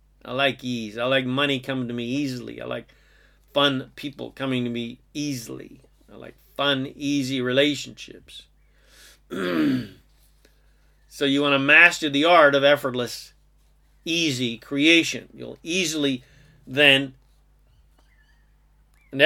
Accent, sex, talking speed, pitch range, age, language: American, male, 120 wpm, 135-155 Hz, 40-59, English